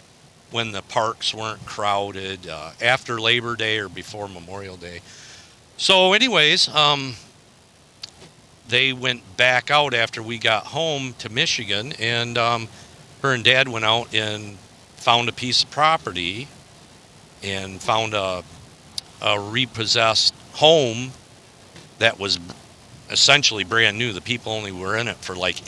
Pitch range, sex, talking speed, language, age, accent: 95-125 Hz, male, 135 wpm, English, 50-69, American